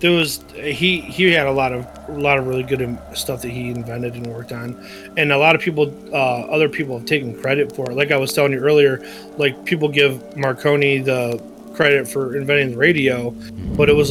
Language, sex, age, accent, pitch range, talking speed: English, male, 30-49, American, 125-150 Hz, 220 wpm